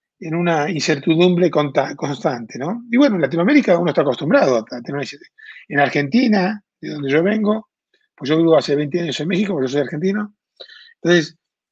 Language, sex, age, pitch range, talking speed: Spanish, male, 40-59, 150-210 Hz, 170 wpm